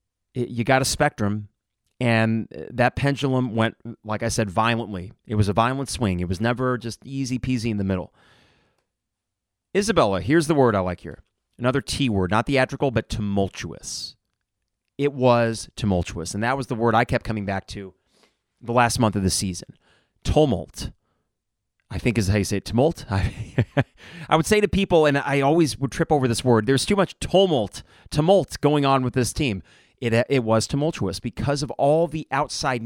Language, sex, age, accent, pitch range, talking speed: English, male, 30-49, American, 105-140 Hz, 185 wpm